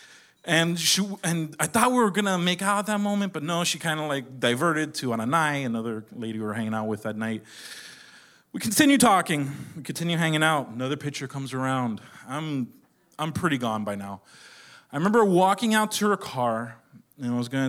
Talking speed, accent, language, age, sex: 205 wpm, American, English, 30-49, male